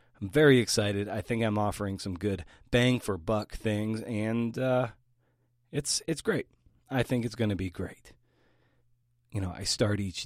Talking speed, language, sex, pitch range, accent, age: 170 wpm, English, male, 100-120 Hz, American, 30-49